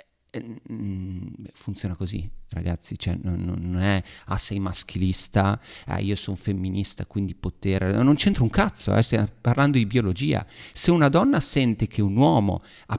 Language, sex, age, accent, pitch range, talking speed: Italian, male, 30-49, native, 95-120 Hz, 150 wpm